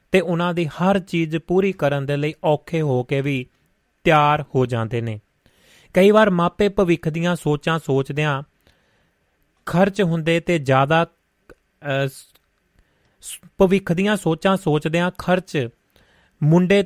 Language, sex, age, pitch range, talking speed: Punjabi, male, 30-49, 135-175 Hz, 130 wpm